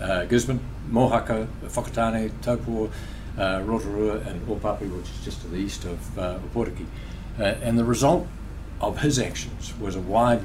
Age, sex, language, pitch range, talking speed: 60-79, male, English, 95-115 Hz, 160 wpm